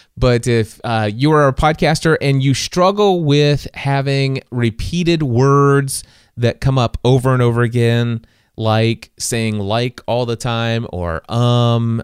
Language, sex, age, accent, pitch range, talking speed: English, male, 30-49, American, 115-150 Hz, 145 wpm